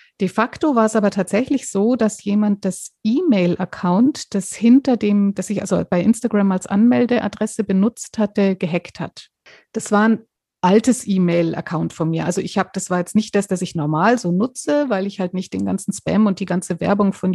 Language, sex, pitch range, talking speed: German, female, 190-230 Hz, 195 wpm